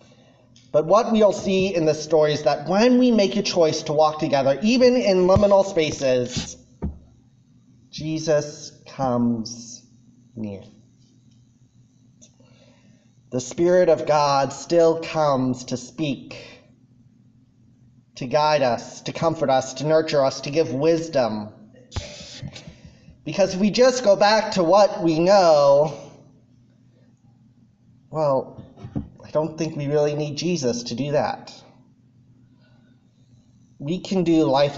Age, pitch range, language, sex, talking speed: 30-49, 120-160 Hz, English, male, 120 wpm